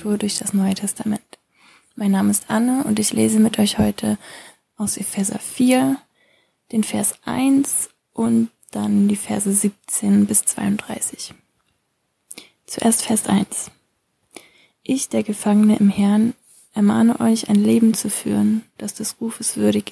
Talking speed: 135 wpm